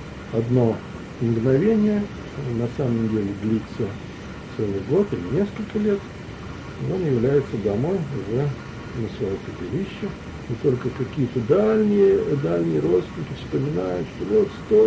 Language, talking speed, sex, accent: Russian, 115 wpm, male, native